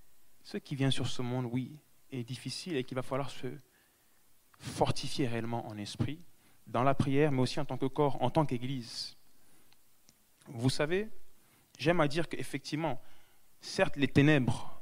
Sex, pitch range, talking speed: male, 120-145 Hz, 160 wpm